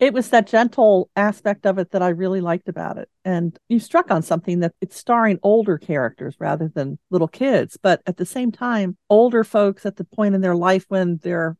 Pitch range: 165-200 Hz